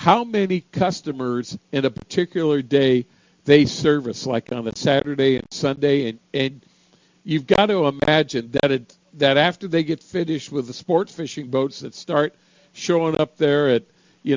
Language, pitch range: English, 140-180 Hz